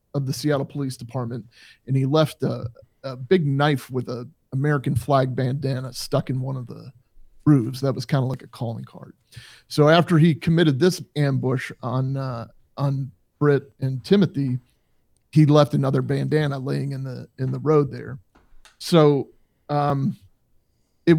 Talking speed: 160 wpm